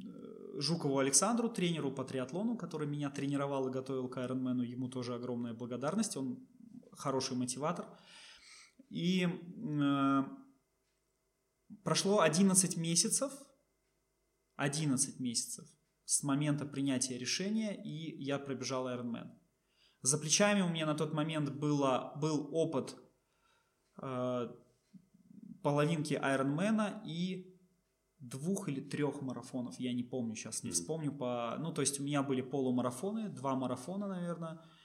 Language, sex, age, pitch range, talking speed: Russian, male, 20-39, 130-185 Hz, 120 wpm